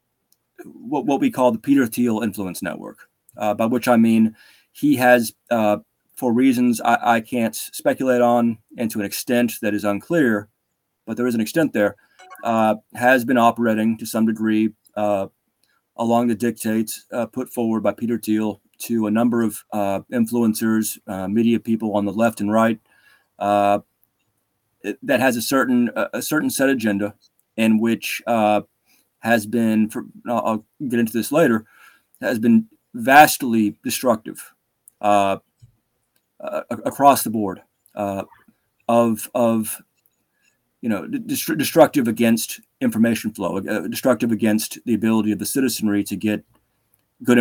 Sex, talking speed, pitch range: male, 150 wpm, 105-120 Hz